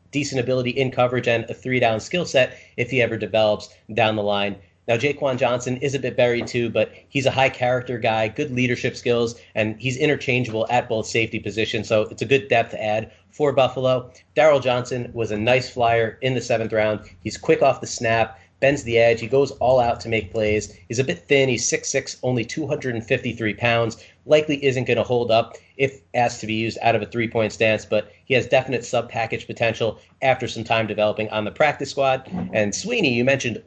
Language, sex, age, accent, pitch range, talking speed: English, male, 30-49, American, 110-130 Hz, 205 wpm